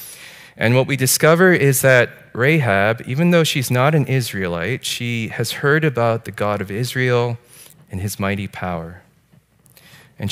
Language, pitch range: English, 100-135 Hz